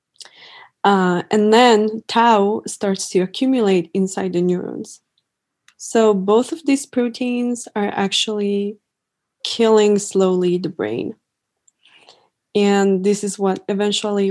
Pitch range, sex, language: 190-220 Hz, female, English